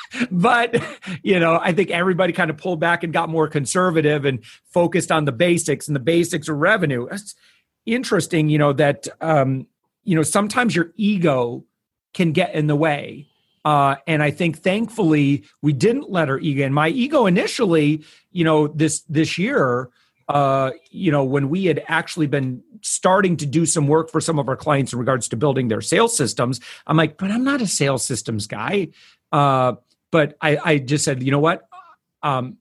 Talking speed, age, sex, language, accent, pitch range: 190 wpm, 40-59, male, English, American, 140-180 Hz